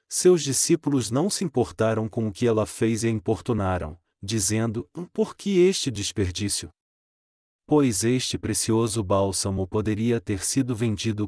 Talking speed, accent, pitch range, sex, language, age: 140 wpm, Brazilian, 105-125 Hz, male, Portuguese, 40-59